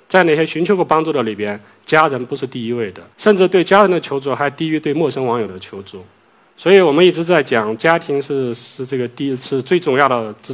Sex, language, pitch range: male, Chinese, 115-150 Hz